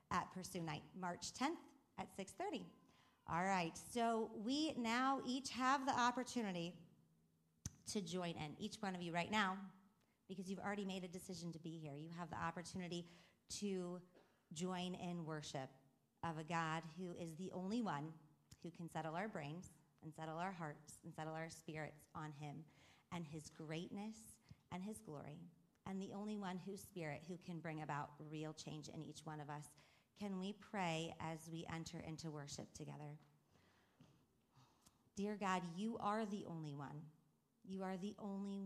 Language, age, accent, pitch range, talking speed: English, 40-59, American, 160-195 Hz, 170 wpm